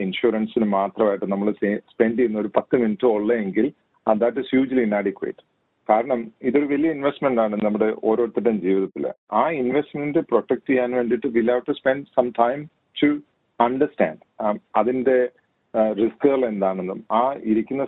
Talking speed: 145 wpm